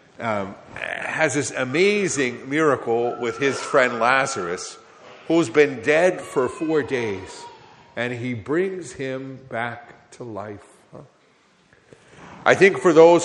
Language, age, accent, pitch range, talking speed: English, 50-69, American, 120-155 Hz, 120 wpm